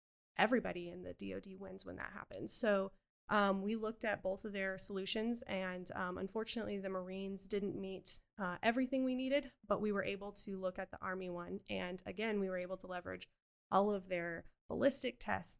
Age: 10-29